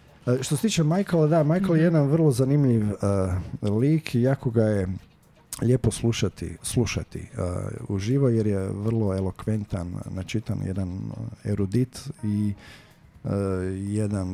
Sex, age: male, 40-59